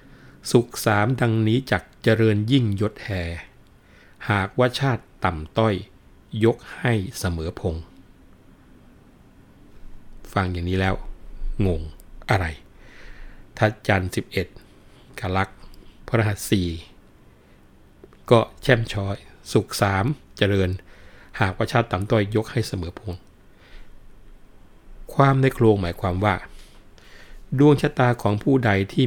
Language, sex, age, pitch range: Thai, male, 60-79, 90-115 Hz